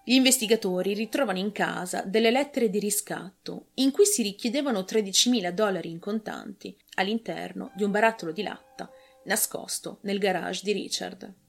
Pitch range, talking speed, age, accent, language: 185-265 Hz, 145 wpm, 30-49, native, Italian